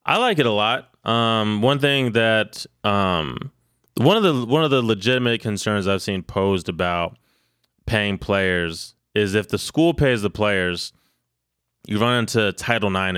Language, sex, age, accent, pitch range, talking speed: English, male, 20-39, American, 90-115 Hz, 165 wpm